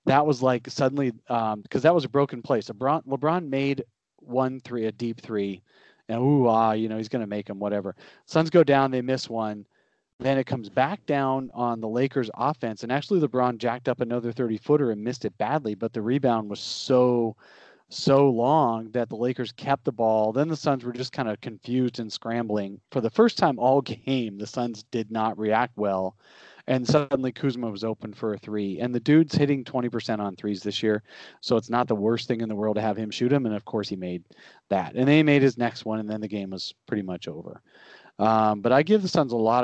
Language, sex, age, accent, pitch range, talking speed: English, male, 30-49, American, 110-130 Hz, 230 wpm